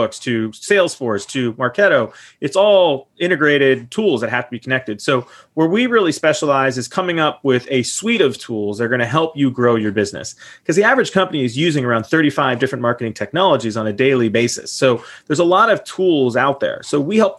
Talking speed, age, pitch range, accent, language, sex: 210 wpm, 30-49, 120-160 Hz, American, English, male